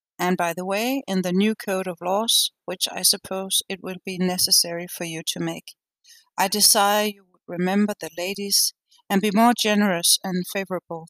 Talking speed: 185 wpm